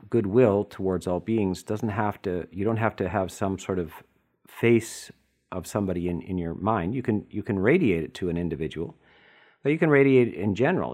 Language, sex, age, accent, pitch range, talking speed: English, male, 50-69, American, 100-135 Hz, 210 wpm